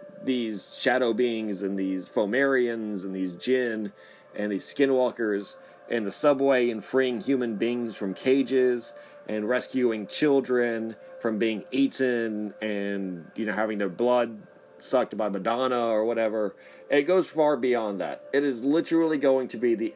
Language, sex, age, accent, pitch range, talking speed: English, male, 40-59, American, 105-130 Hz, 150 wpm